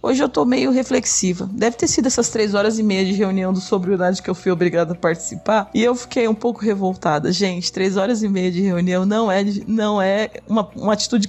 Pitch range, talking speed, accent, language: 170-205 Hz, 230 wpm, Brazilian, Portuguese